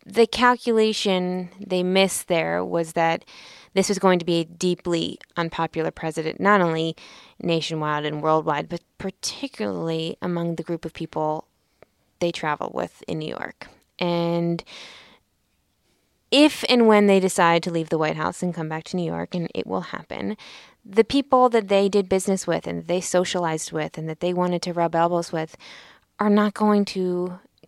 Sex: female